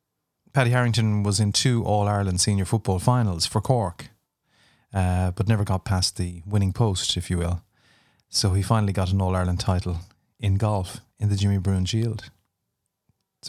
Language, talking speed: English, 165 wpm